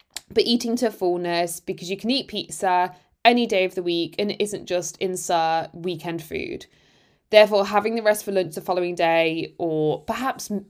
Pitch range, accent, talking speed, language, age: 180-220 Hz, British, 180 wpm, English, 20-39